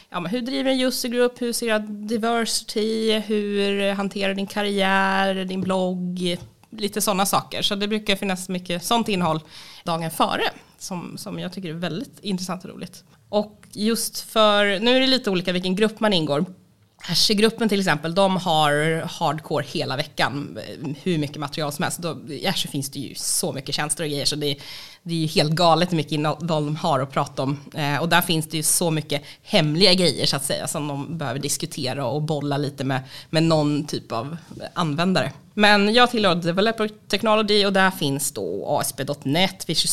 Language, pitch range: Swedish, 155-200 Hz